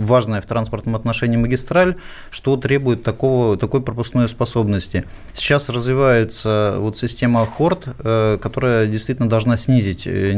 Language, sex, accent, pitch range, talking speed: Russian, male, native, 110-130 Hz, 115 wpm